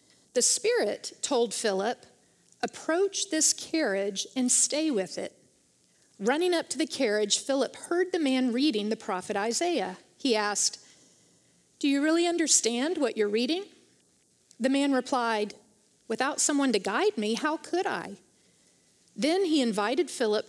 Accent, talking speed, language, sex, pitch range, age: American, 140 wpm, English, female, 220-320 Hz, 40-59